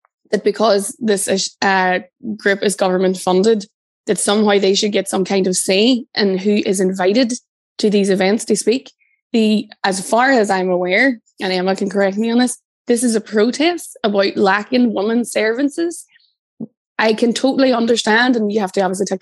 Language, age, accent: English, 20-39, Irish